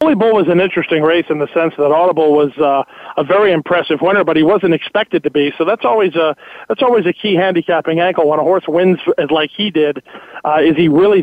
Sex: male